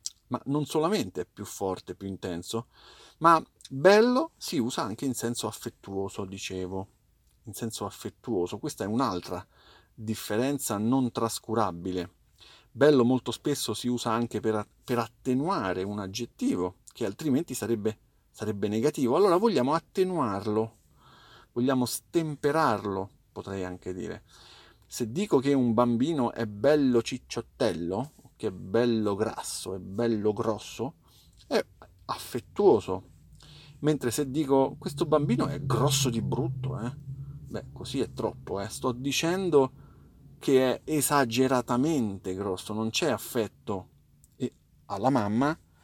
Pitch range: 100-135 Hz